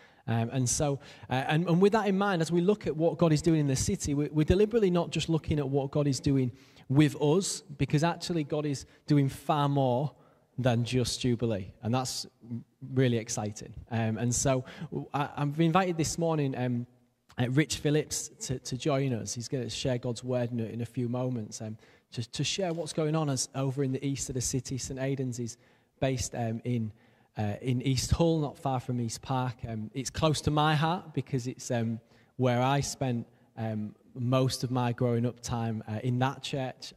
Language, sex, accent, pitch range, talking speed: English, male, British, 115-145 Hz, 200 wpm